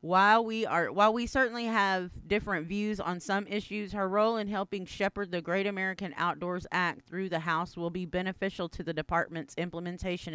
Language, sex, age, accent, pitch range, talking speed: English, female, 40-59, American, 165-195 Hz, 185 wpm